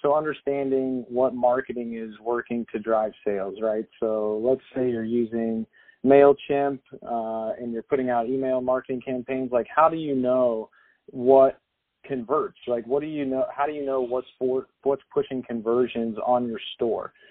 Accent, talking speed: American, 165 wpm